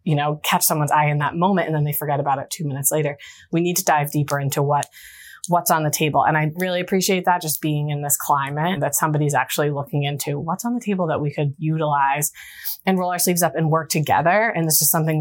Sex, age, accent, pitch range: female, 20-39, American, 145-165 Hz